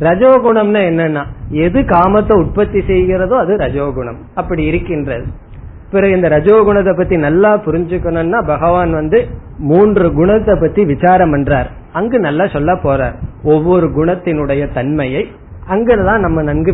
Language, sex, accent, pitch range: Tamil, male, native, 145-190 Hz